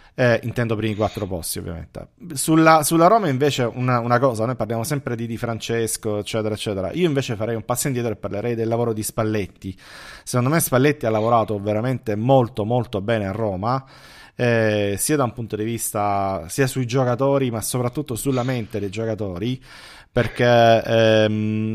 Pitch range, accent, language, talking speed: 110-130 Hz, native, Italian, 175 wpm